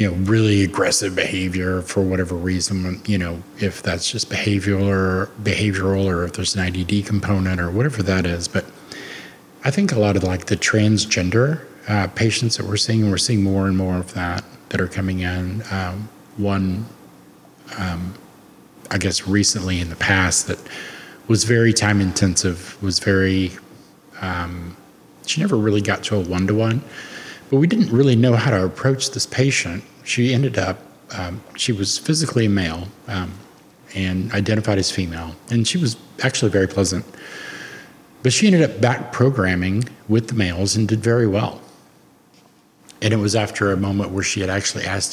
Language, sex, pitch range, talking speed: English, male, 95-110 Hz, 170 wpm